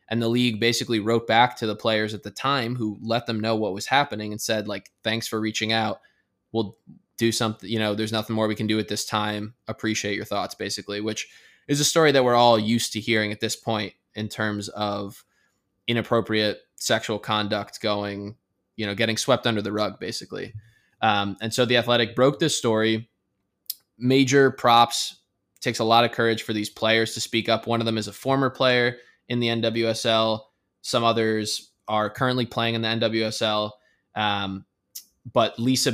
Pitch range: 105-120 Hz